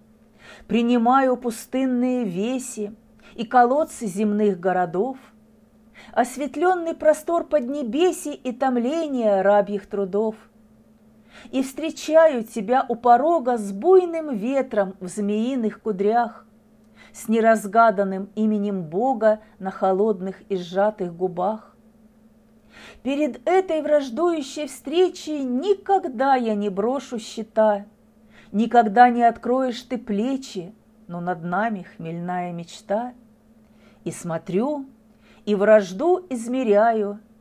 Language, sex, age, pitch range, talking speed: Russian, female, 40-59, 205-250 Hz, 95 wpm